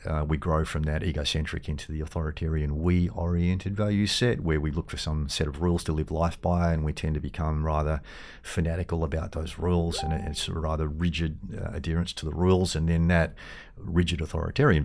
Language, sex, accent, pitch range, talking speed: English, male, Australian, 75-85 Hz, 200 wpm